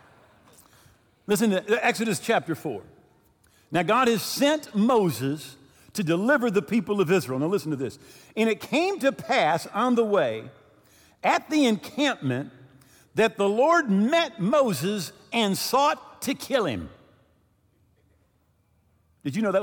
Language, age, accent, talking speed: English, 50-69, American, 140 wpm